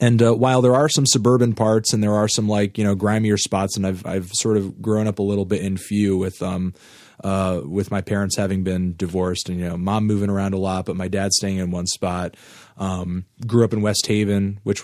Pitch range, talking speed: 95-115 Hz, 245 wpm